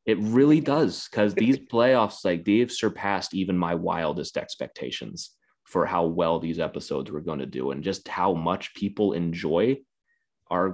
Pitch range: 85-105 Hz